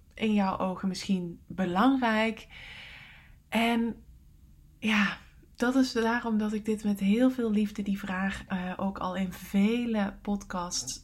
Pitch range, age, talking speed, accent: 185-220 Hz, 20-39, 130 wpm, Dutch